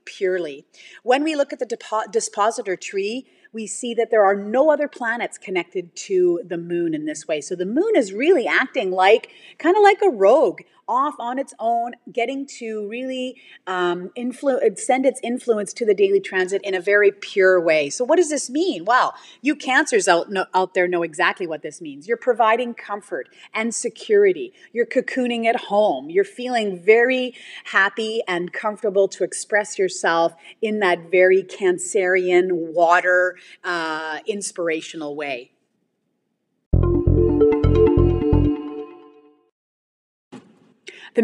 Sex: female